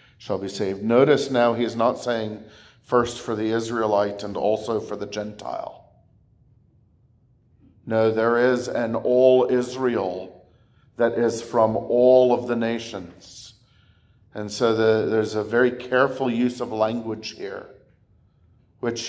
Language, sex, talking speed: English, male, 130 wpm